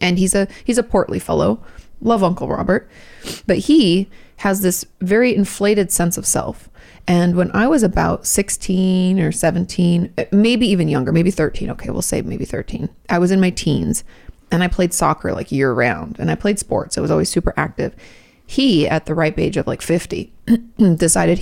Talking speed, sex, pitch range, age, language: 190 wpm, female, 160-200 Hz, 30-49, English